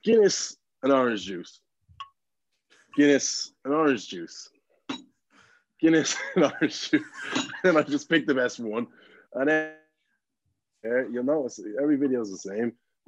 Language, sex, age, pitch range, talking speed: English, male, 20-39, 105-145 Hz, 135 wpm